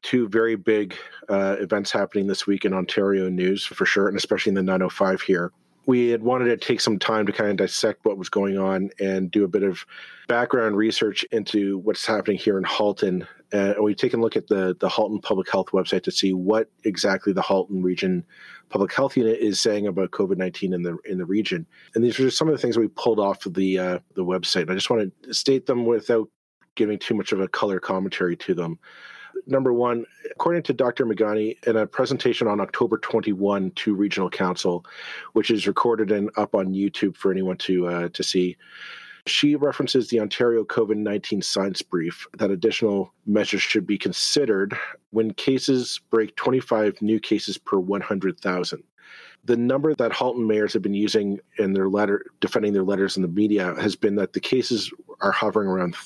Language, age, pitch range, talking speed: English, 40-59, 95-115 Hz, 200 wpm